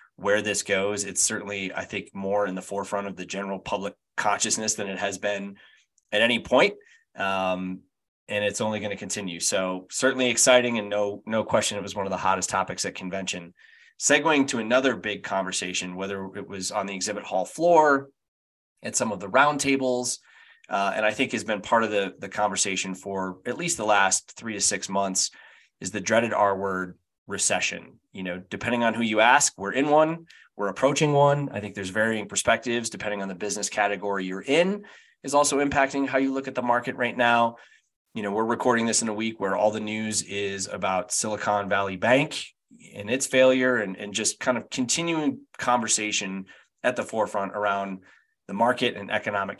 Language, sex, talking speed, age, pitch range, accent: English, male, 195 wpm, 20-39, 100-125 Hz, American